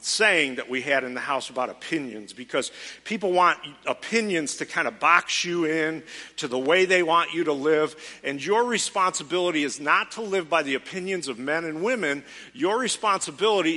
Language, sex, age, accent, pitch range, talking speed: English, male, 50-69, American, 155-210 Hz, 185 wpm